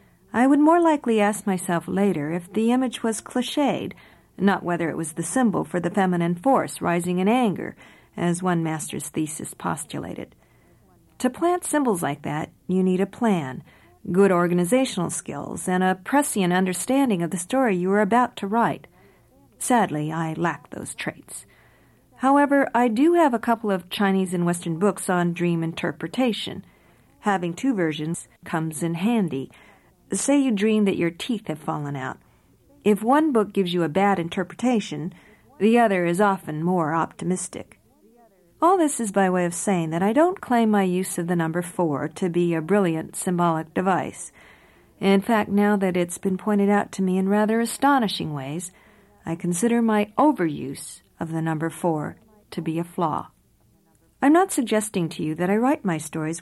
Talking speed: 170 wpm